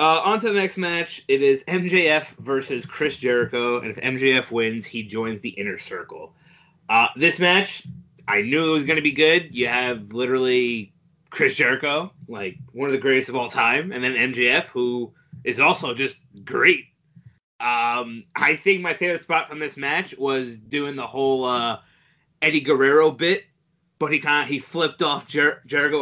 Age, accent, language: 30-49, American, English